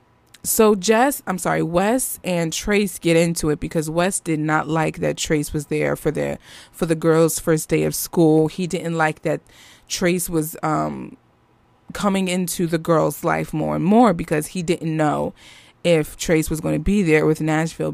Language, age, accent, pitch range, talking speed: English, 20-39, American, 165-230 Hz, 185 wpm